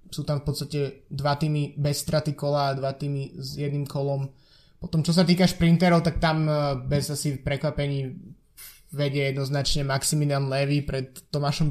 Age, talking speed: 20-39, 160 wpm